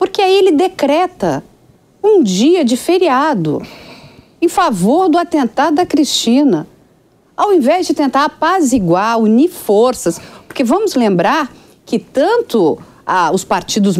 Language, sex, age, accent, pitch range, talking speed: English, female, 50-69, Brazilian, 220-320 Hz, 125 wpm